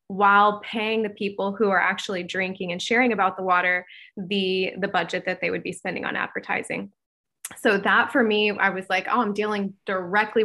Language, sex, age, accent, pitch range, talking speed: English, female, 20-39, American, 195-225 Hz, 195 wpm